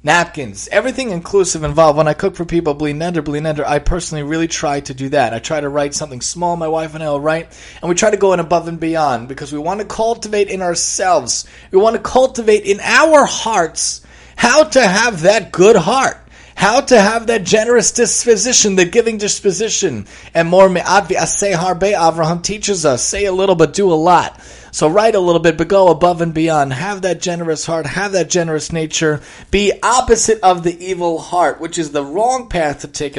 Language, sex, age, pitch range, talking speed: English, male, 30-49, 145-200 Hz, 210 wpm